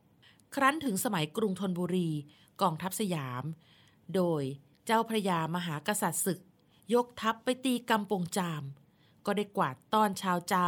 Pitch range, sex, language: 165-210 Hz, female, Thai